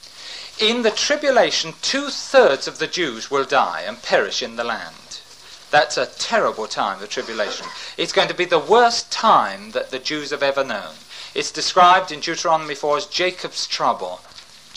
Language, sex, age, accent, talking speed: English, male, 40-59, British, 165 wpm